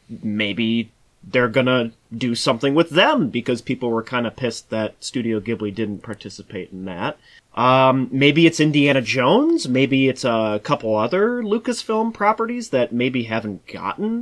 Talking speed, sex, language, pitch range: 155 wpm, male, English, 105-135 Hz